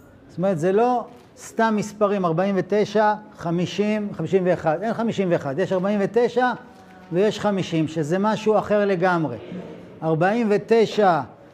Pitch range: 180-220 Hz